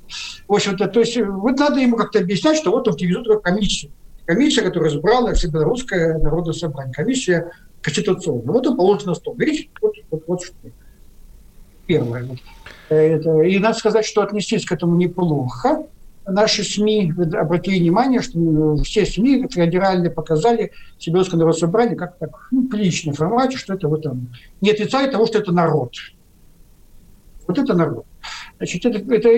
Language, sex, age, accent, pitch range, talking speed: Russian, male, 60-79, native, 160-225 Hz, 150 wpm